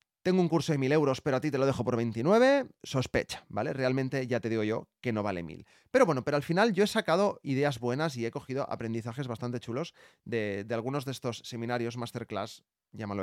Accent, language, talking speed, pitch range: Spanish, Spanish, 220 wpm, 115-170 Hz